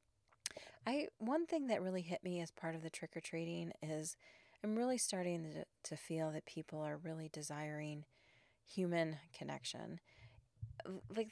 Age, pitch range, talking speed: 30-49, 150-185 Hz, 145 wpm